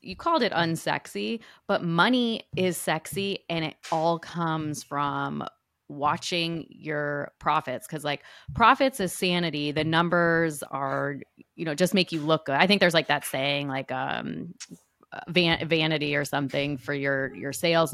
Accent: American